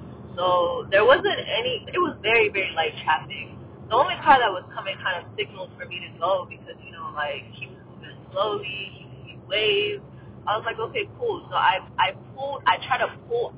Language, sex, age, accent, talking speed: English, female, 20-39, American, 210 wpm